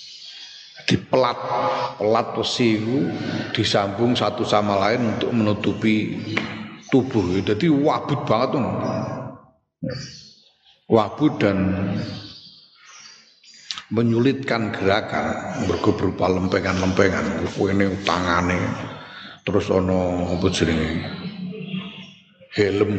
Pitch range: 100-135 Hz